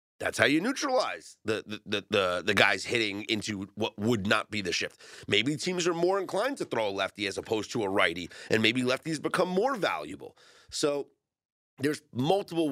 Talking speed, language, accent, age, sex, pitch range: 180 wpm, English, American, 30-49, male, 100-135 Hz